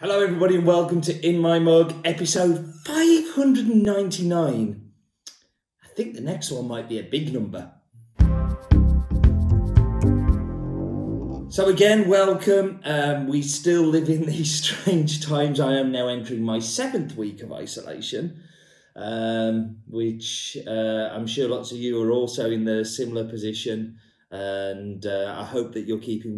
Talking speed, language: 140 wpm, English